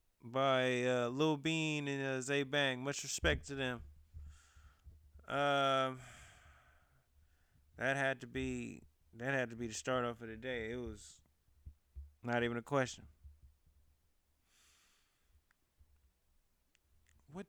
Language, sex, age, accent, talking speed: English, male, 20-39, American, 115 wpm